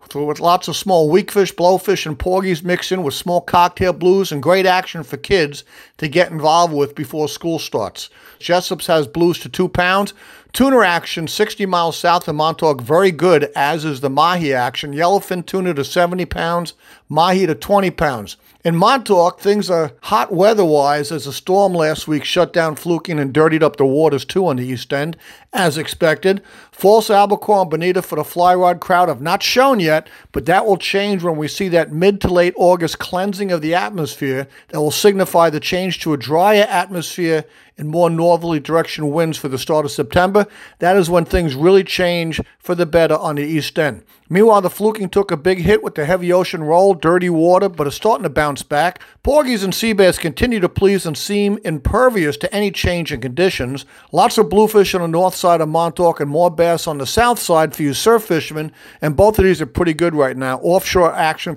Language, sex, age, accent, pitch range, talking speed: English, male, 50-69, American, 155-190 Hz, 205 wpm